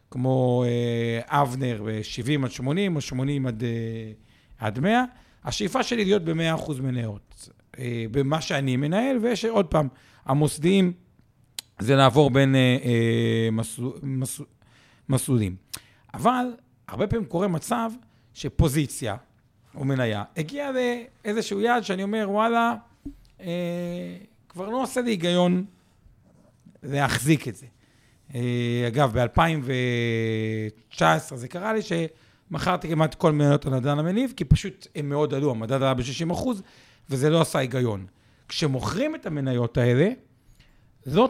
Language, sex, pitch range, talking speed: Hebrew, male, 125-190 Hz, 120 wpm